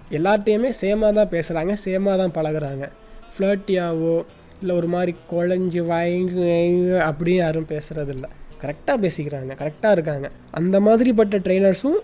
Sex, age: male, 20-39